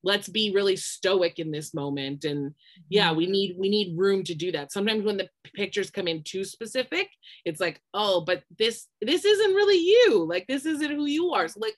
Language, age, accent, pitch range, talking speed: English, 20-39, American, 175-235 Hz, 215 wpm